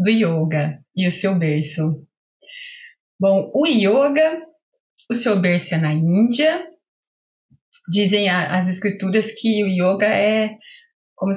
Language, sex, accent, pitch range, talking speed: Portuguese, female, Brazilian, 195-280 Hz, 120 wpm